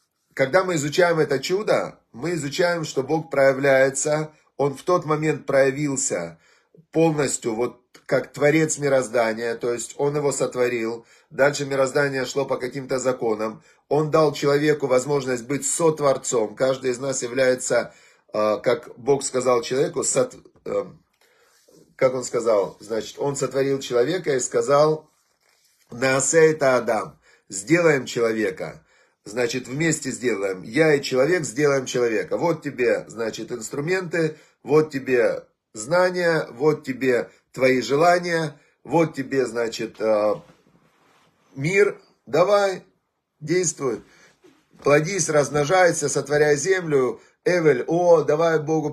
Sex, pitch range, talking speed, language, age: male, 130-160 Hz, 115 wpm, Russian, 30-49